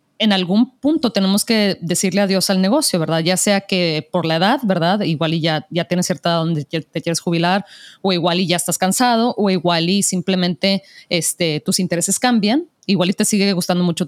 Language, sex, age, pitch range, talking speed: Spanish, female, 30-49, 170-210 Hz, 200 wpm